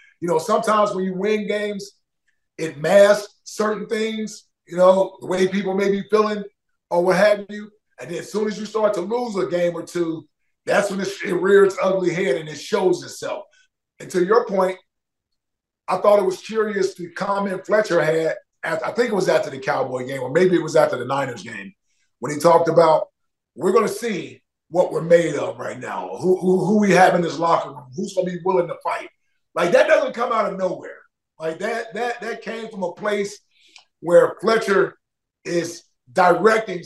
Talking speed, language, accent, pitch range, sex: 200 wpm, English, American, 170-215 Hz, male